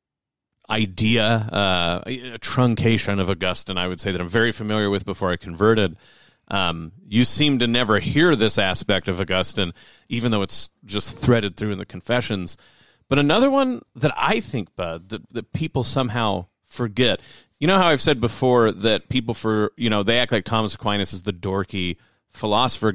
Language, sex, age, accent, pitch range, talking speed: English, male, 40-59, American, 100-125 Hz, 175 wpm